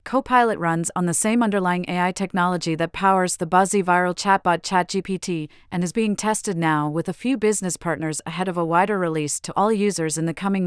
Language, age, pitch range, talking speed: English, 40-59, 165-195 Hz, 200 wpm